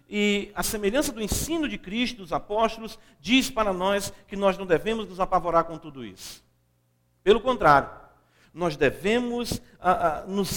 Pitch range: 180-235 Hz